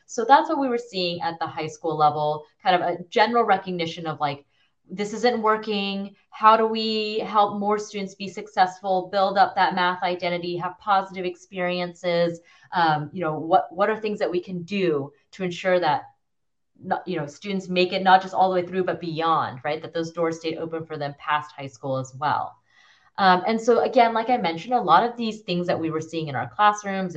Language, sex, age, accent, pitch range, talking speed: English, female, 30-49, American, 155-205 Hz, 215 wpm